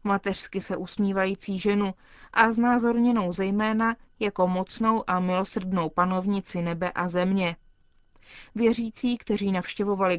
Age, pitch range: 20-39, 190-225 Hz